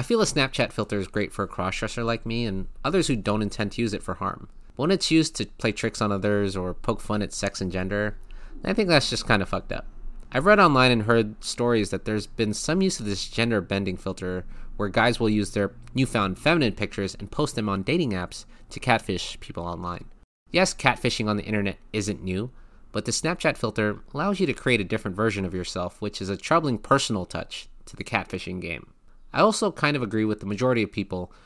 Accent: American